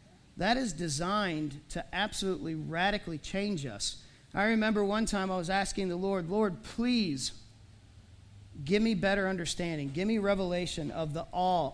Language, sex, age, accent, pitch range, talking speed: English, male, 40-59, American, 130-185 Hz, 150 wpm